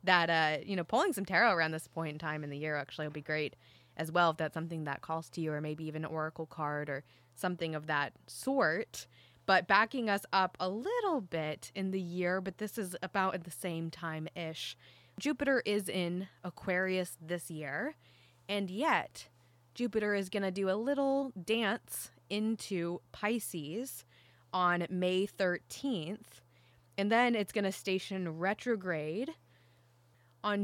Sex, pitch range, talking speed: female, 155-195 Hz, 170 wpm